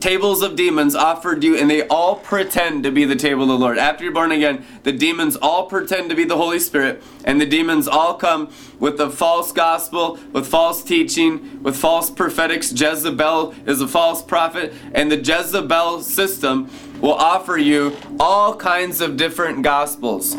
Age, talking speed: 20-39, 180 wpm